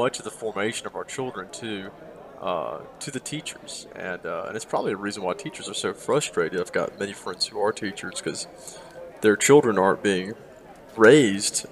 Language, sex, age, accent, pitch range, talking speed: English, male, 30-49, American, 110-135 Hz, 185 wpm